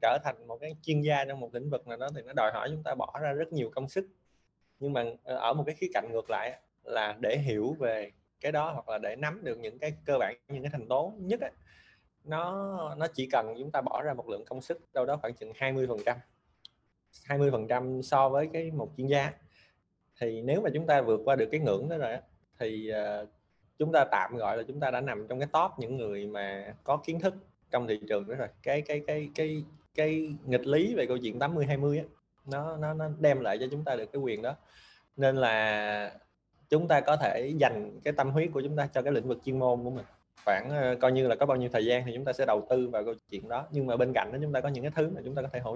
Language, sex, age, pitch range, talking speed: Vietnamese, male, 20-39, 115-150 Hz, 260 wpm